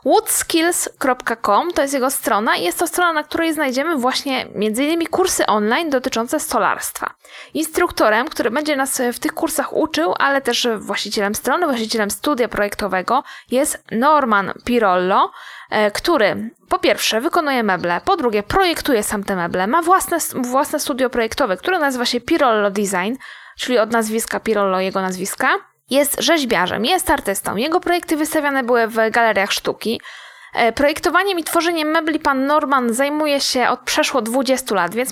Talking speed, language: 150 wpm, Polish